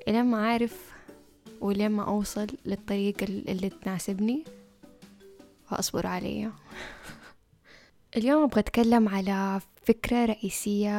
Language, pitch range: Arabic, 195-230 Hz